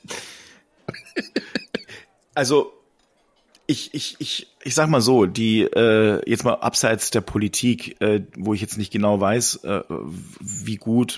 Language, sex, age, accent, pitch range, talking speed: German, male, 40-59, German, 100-120 Hz, 135 wpm